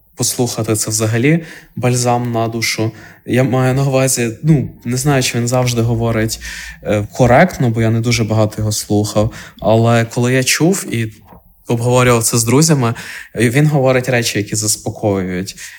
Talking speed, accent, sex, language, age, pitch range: 150 wpm, native, male, Ukrainian, 20-39, 110-130 Hz